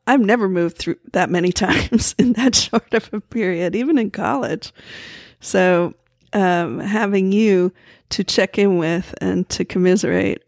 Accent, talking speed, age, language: American, 155 wpm, 50-69, English